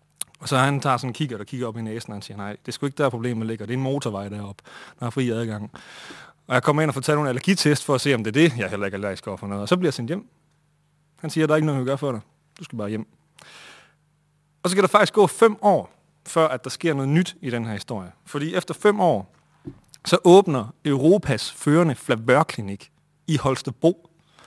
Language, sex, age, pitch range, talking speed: Danish, male, 30-49, 120-160 Hz, 255 wpm